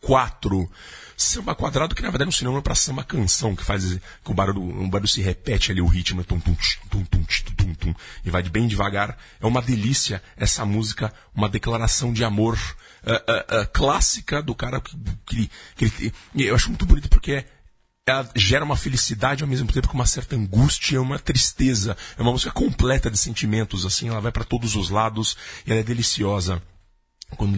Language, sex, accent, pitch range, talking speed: Portuguese, male, Brazilian, 95-120 Hz, 200 wpm